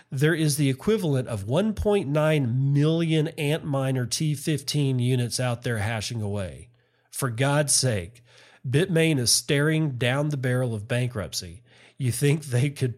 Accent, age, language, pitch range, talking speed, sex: American, 40-59, English, 115-140 Hz, 135 wpm, male